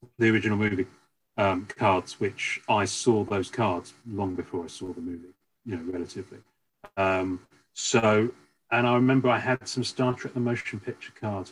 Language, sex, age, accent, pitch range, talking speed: English, male, 40-59, British, 90-120 Hz, 170 wpm